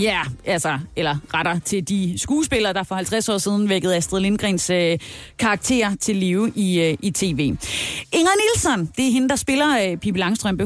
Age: 30-49